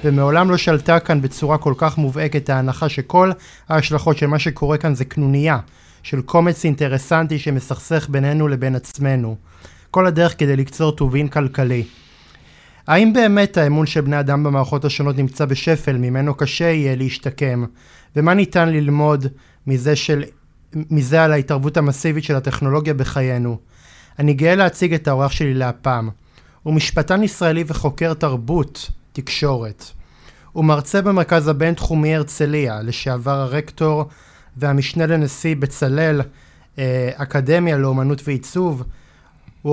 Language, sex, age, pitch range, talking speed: Hebrew, male, 20-39, 130-155 Hz, 125 wpm